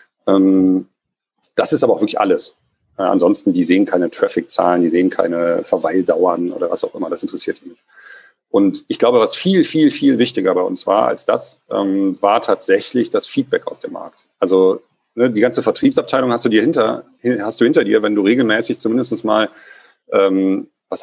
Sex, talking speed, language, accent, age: male, 170 wpm, German, German, 40-59